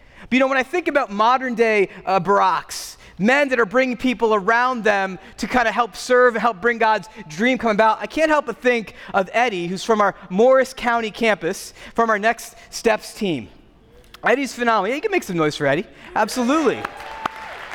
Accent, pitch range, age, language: American, 215-255 Hz, 30-49, English